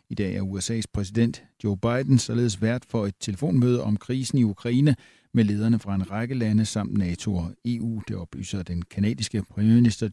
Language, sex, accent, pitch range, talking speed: Danish, male, native, 100-125 Hz, 185 wpm